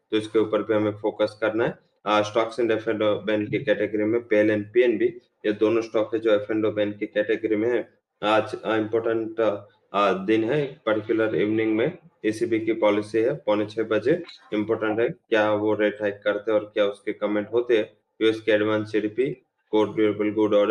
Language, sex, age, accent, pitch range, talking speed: English, male, 20-39, Indian, 105-115 Hz, 135 wpm